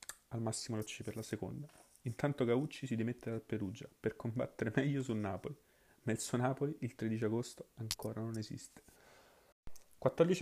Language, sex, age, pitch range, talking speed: Italian, male, 30-49, 115-130 Hz, 165 wpm